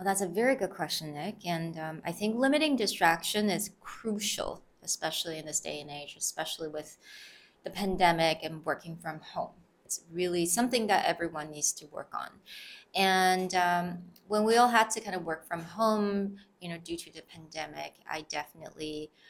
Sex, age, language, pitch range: female, 20-39, Chinese, 160-220 Hz